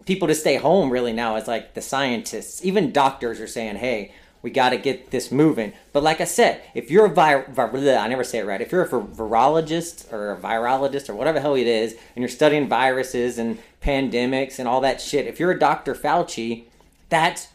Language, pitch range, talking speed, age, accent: English, 120-175 Hz, 215 wpm, 30-49, American